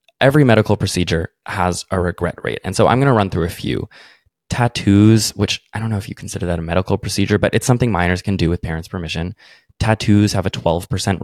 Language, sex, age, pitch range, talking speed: English, male, 20-39, 90-115 Hz, 220 wpm